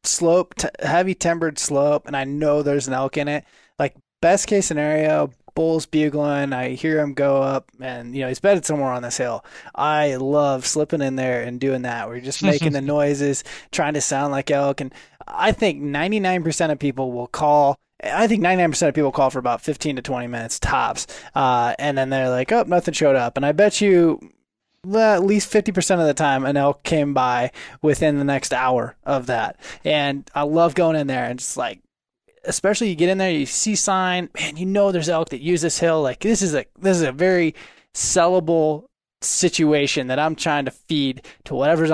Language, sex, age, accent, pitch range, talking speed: English, male, 20-39, American, 135-175 Hz, 205 wpm